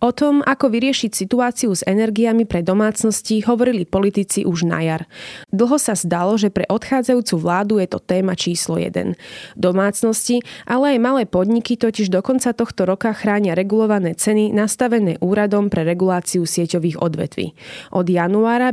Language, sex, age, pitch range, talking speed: Slovak, female, 20-39, 180-230 Hz, 150 wpm